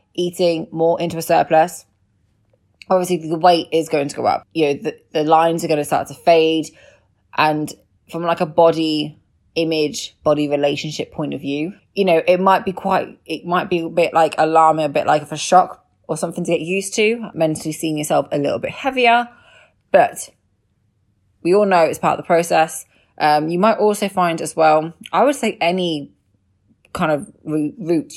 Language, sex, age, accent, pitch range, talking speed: English, female, 20-39, British, 145-180 Hz, 190 wpm